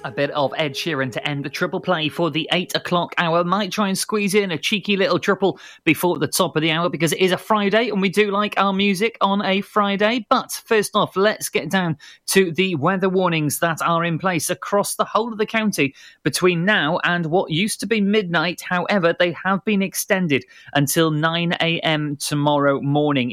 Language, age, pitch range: English, 30-49, 145-190 Hz